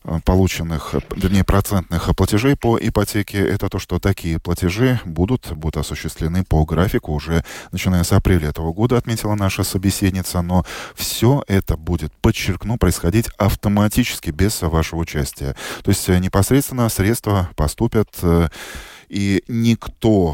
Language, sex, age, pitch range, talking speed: Russian, male, 20-39, 80-105 Hz, 125 wpm